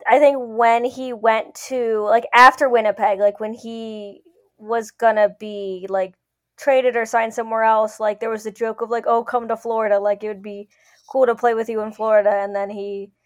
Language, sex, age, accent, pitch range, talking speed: English, female, 20-39, American, 205-250 Hz, 215 wpm